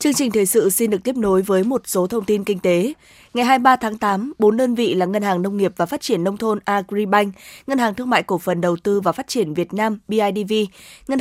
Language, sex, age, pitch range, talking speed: Vietnamese, female, 20-39, 185-225 Hz, 255 wpm